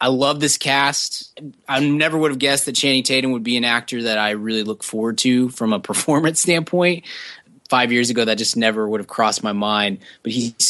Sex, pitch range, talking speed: male, 110-135 Hz, 220 wpm